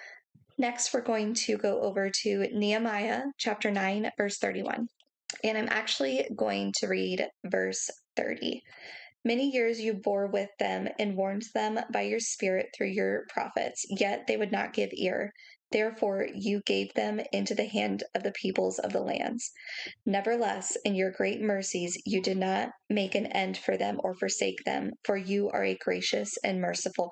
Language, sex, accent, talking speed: English, female, American, 170 wpm